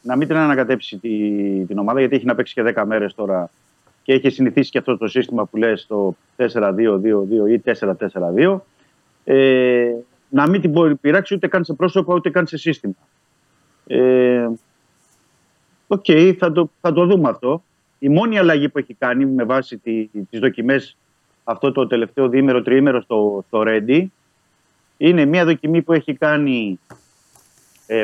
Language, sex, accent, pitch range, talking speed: Greek, male, native, 110-150 Hz, 150 wpm